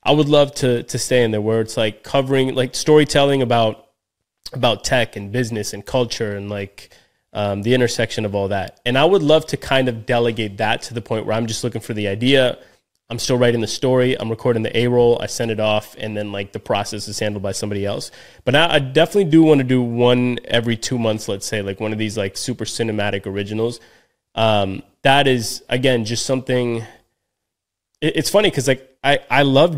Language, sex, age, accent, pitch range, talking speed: English, male, 20-39, American, 110-130 Hz, 215 wpm